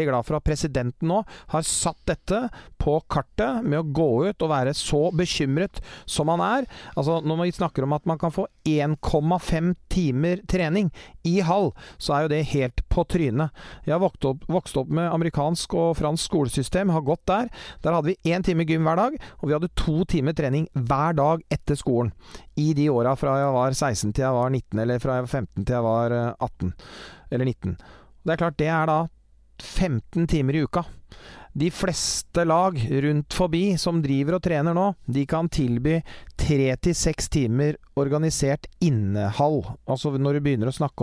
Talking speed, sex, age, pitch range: 185 wpm, male, 40-59, 135-170 Hz